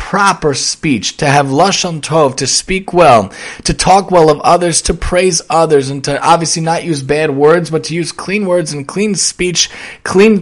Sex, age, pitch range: male, 30-49, 155-190 Hz